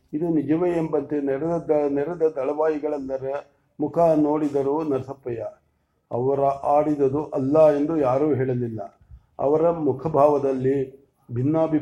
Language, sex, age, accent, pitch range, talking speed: English, male, 50-69, Indian, 135-155 Hz, 120 wpm